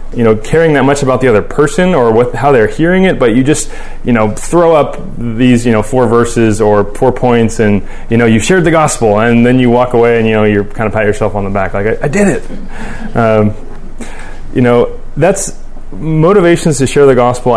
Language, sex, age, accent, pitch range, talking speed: English, male, 30-49, American, 105-130 Hz, 230 wpm